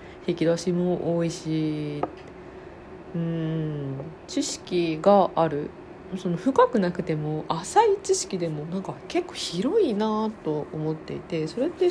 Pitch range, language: 155-220 Hz, Japanese